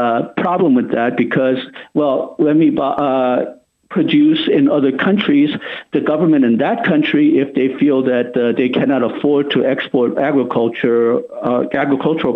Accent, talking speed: American, 155 wpm